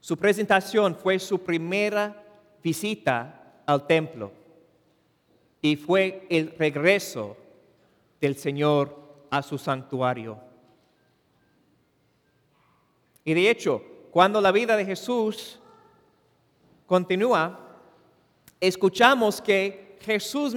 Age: 50-69